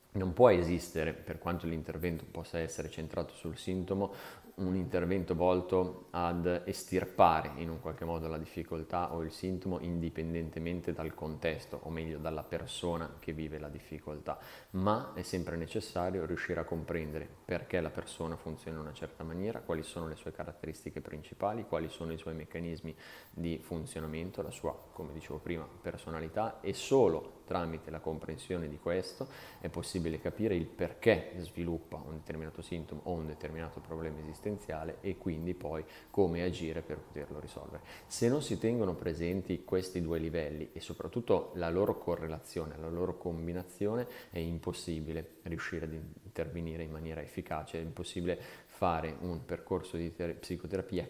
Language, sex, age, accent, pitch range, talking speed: Italian, male, 30-49, native, 80-90 Hz, 155 wpm